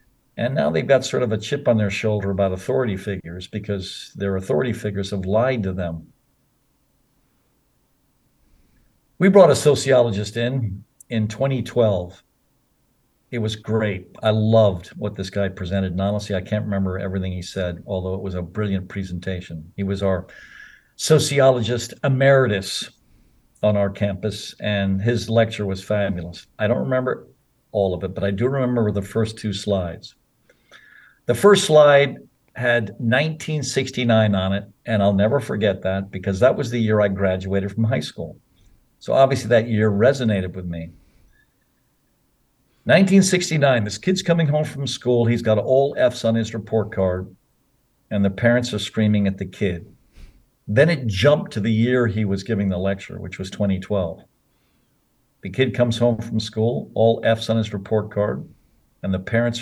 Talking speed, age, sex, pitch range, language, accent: 160 wpm, 50-69, male, 100-125 Hz, English, American